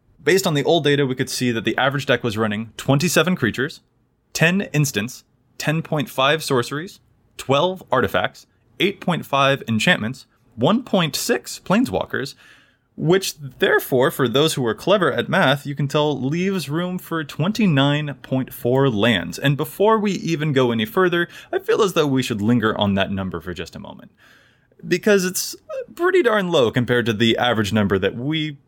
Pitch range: 110-165 Hz